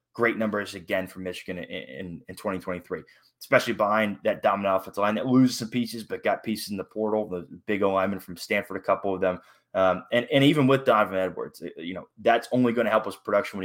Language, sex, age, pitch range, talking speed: English, male, 20-39, 95-115 Hz, 235 wpm